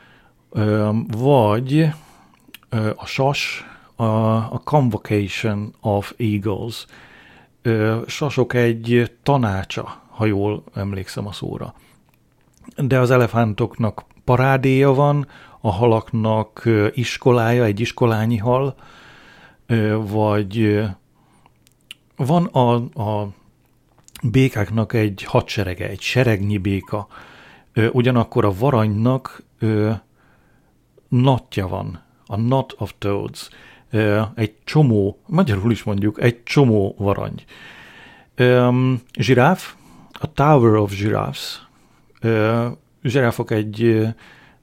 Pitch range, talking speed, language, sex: 105-125 Hz, 95 wpm, Hungarian, male